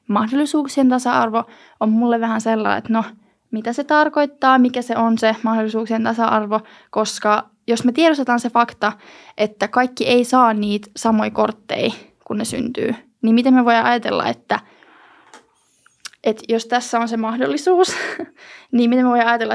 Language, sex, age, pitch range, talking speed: Finnish, female, 20-39, 220-250 Hz, 155 wpm